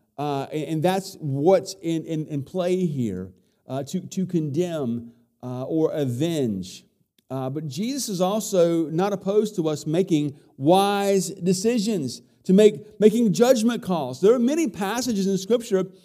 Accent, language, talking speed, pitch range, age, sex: American, English, 145 wpm, 135-195 Hz, 50-69, male